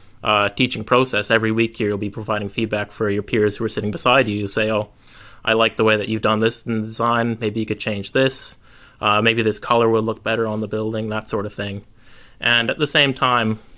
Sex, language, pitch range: male, English, 110-120 Hz